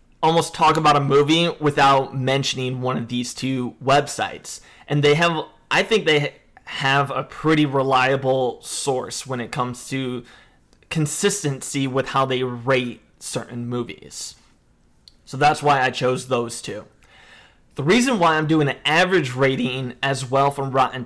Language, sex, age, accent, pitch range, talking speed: English, male, 20-39, American, 130-150 Hz, 150 wpm